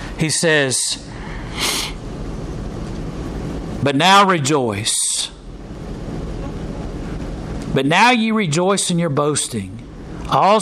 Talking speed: 75 wpm